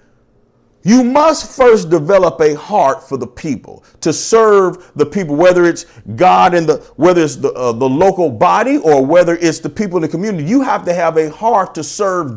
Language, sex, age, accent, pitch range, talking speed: English, male, 40-59, American, 145-215 Hz, 200 wpm